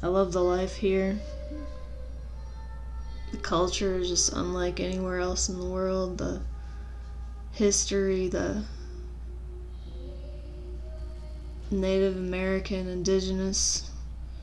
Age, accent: 20-39, American